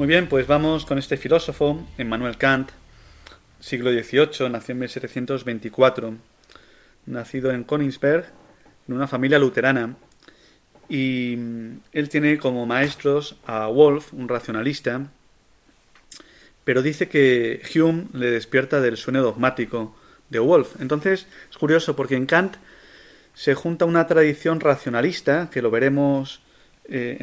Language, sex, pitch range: Spanish, male, 125-150 Hz